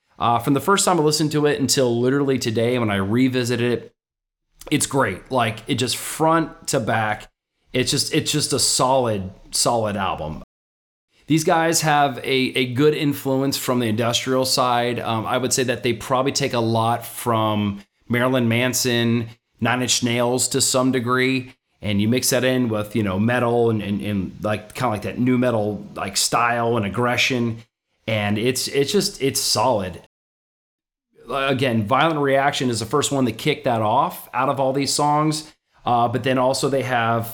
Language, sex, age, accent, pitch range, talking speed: English, male, 30-49, American, 110-135 Hz, 180 wpm